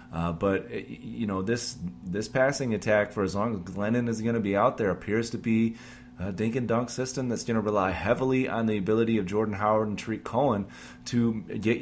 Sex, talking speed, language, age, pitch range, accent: male, 220 wpm, English, 30-49, 95-120 Hz, American